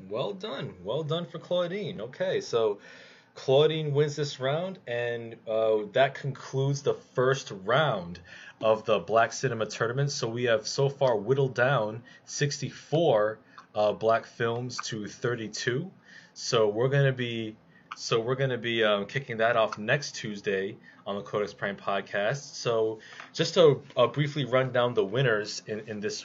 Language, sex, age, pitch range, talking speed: English, male, 20-39, 115-145 Hz, 155 wpm